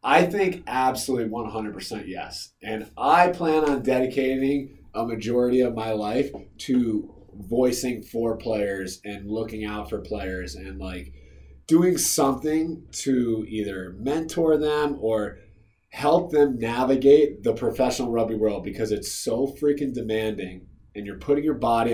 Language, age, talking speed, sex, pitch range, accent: English, 30-49, 135 wpm, male, 105-140 Hz, American